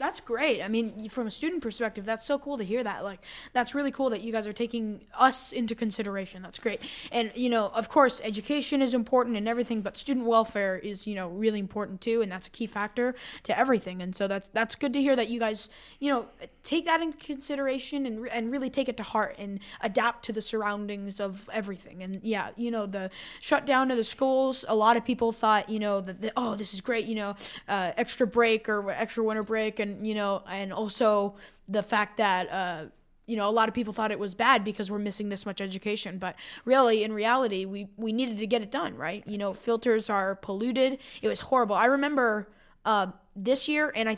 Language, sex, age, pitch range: English, female, 10-29, 205-245 Hz